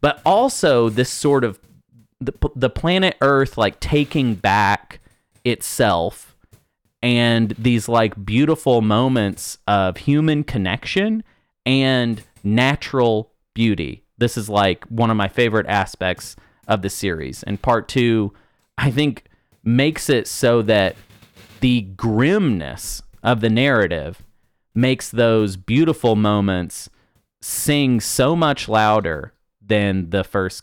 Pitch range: 100-120 Hz